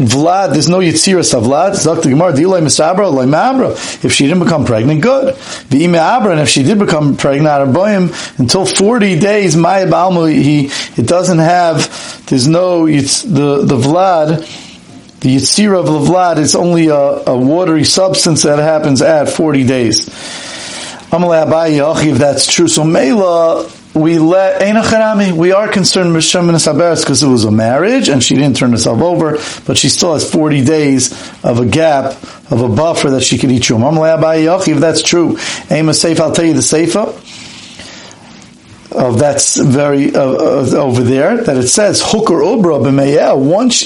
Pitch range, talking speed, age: 145-185 Hz, 160 wpm, 40-59